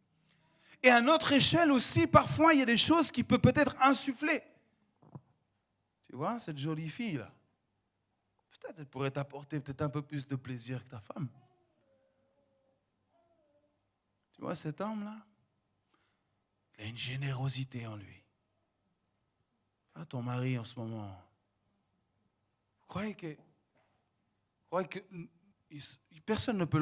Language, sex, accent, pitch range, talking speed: French, male, French, 115-190 Hz, 130 wpm